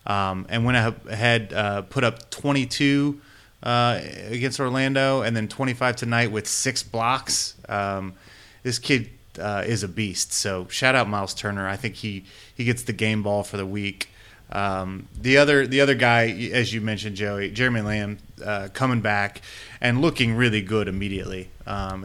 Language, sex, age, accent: English, male, 30-49, American